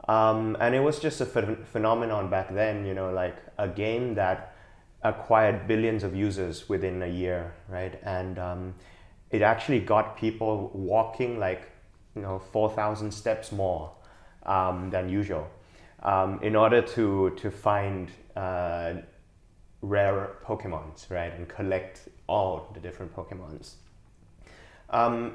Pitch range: 90-110 Hz